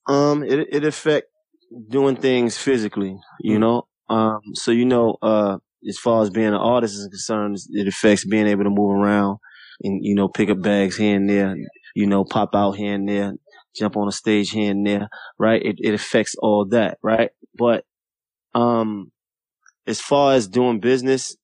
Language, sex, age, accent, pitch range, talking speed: English, male, 20-39, American, 100-120 Hz, 185 wpm